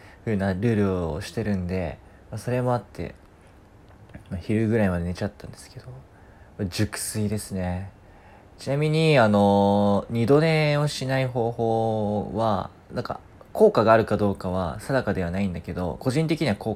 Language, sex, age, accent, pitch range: Japanese, male, 20-39, native, 95-130 Hz